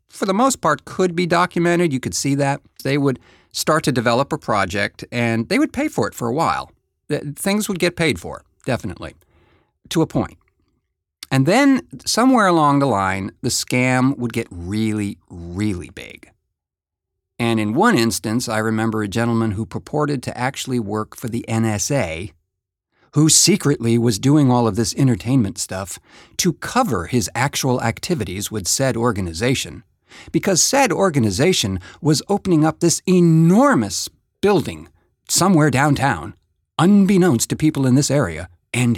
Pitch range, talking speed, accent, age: 105-155 Hz, 155 wpm, American, 50-69